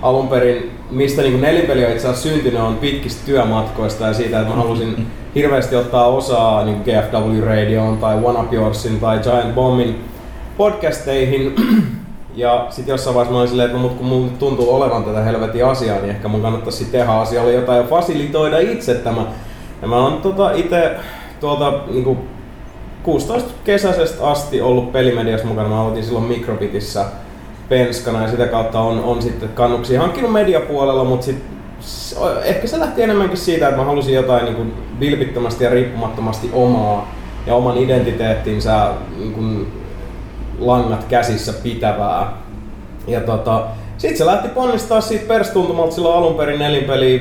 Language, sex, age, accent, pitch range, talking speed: Finnish, male, 30-49, native, 110-135 Hz, 150 wpm